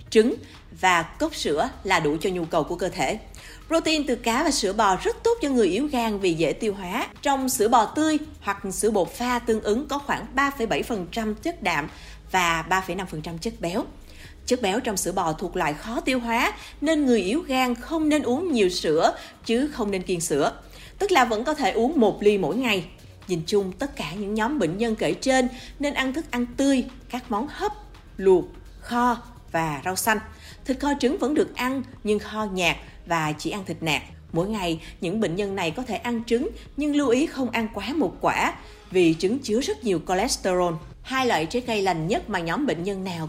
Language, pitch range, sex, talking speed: Vietnamese, 185-260 Hz, female, 220 wpm